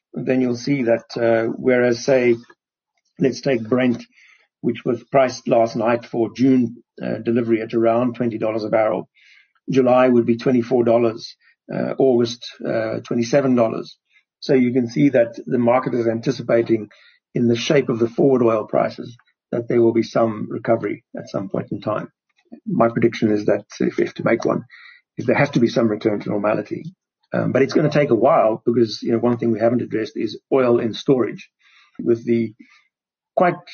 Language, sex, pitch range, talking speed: English, male, 115-130 Hz, 180 wpm